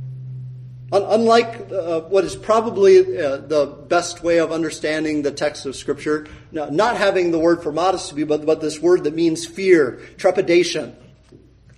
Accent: American